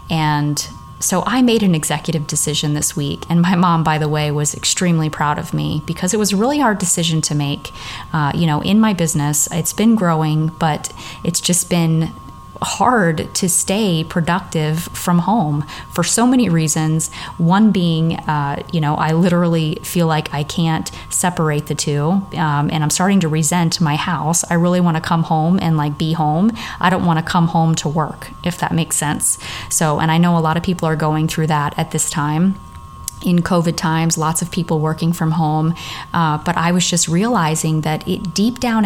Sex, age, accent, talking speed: female, 30-49, American, 200 wpm